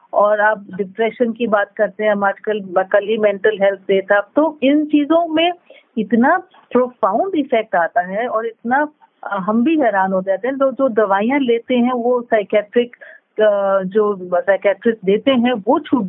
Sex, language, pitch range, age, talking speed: female, Hindi, 205-260 Hz, 50-69, 165 wpm